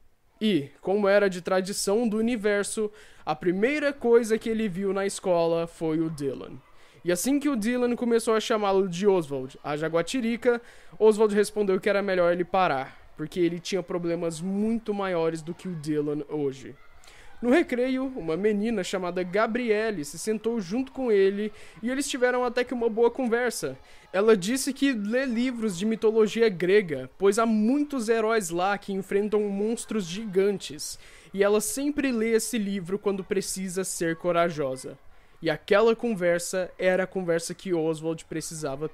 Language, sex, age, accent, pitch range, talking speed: Portuguese, male, 20-39, Brazilian, 180-230 Hz, 160 wpm